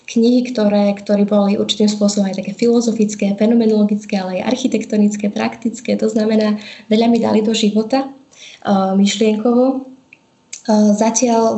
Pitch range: 205-230 Hz